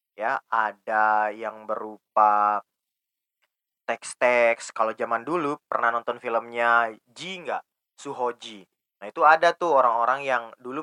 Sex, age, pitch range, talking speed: male, 20-39, 110-135 Hz, 110 wpm